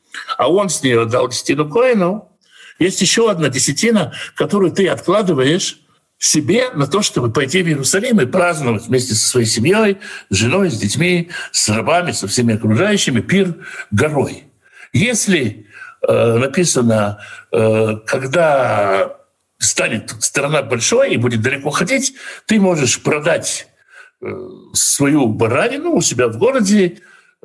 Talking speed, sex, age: 130 wpm, male, 60-79